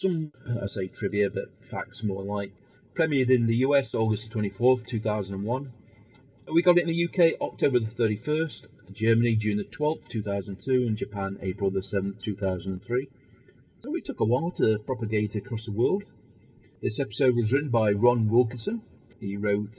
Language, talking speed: English, 195 wpm